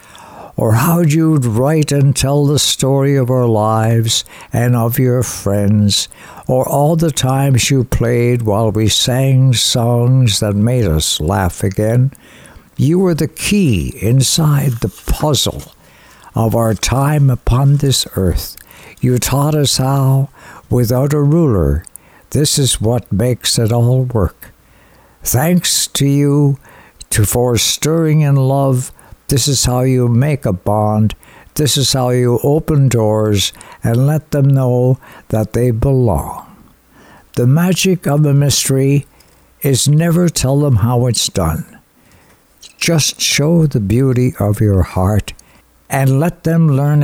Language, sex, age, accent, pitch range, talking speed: English, male, 60-79, American, 110-140 Hz, 135 wpm